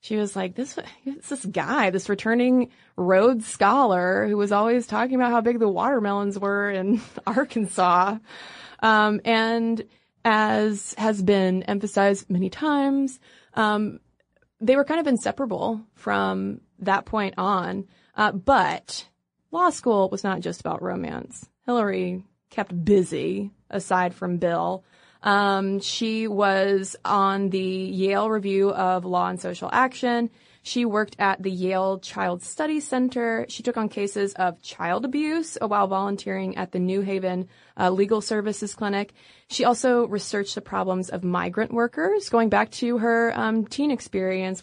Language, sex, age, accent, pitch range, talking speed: English, female, 20-39, American, 190-230 Hz, 145 wpm